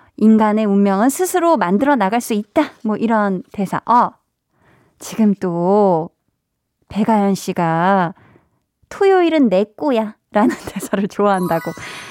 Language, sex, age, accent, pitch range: Korean, female, 20-39, native, 200-265 Hz